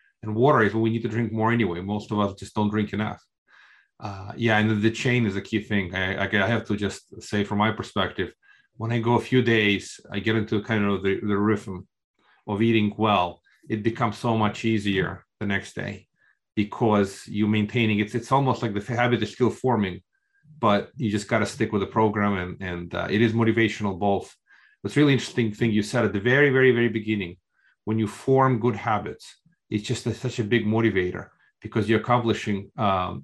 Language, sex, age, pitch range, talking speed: English, male, 30-49, 105-120 Hz, 215 wpm